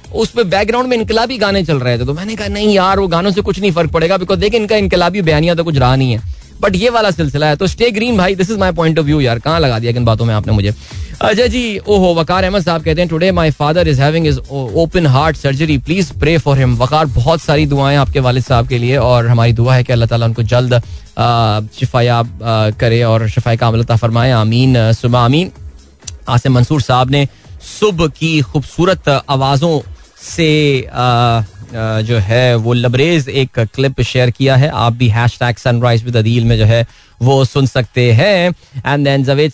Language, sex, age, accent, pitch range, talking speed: Hindi, male, 20-39, native, 120-165 Hz, 190 wpm